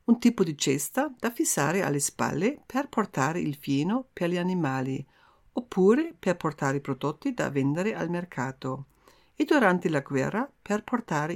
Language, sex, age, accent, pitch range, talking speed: Italian, female, 50-69, native, 145-225 Hz, 160 wpm